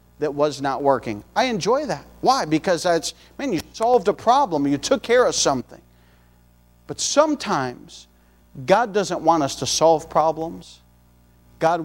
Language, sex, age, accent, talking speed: English, male, 50-69, American, 150 wpm